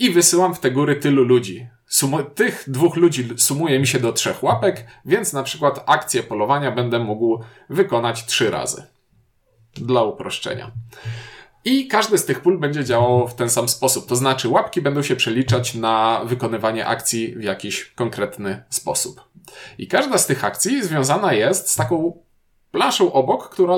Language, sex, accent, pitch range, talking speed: Polish, male, native, 115-135 Hz, 160 wpm